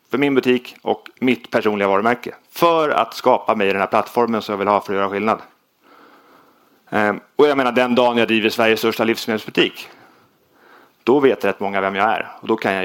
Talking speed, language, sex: 205 wpm, Swedish, male